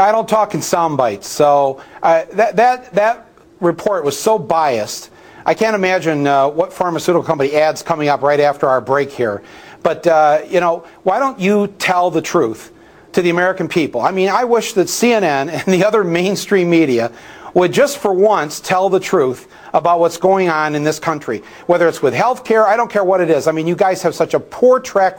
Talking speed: 205 wpm